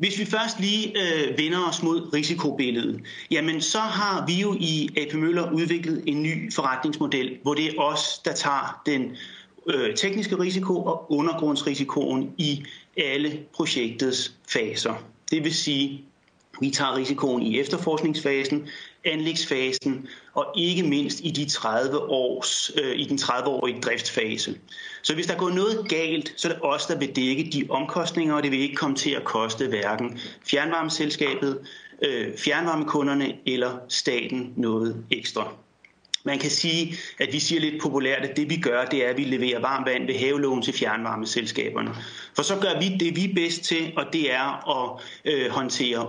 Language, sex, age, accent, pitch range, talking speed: Danish, male, 30-49, native, 135-170 Hz, 155 wpm